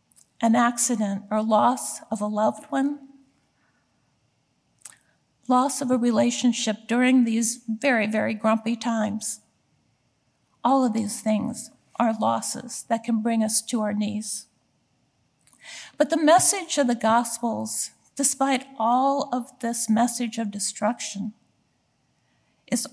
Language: English